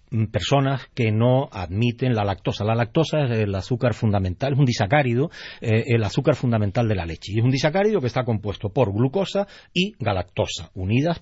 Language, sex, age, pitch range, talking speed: Spanish, male, 40-59, 110-150 Hz, 185 wpm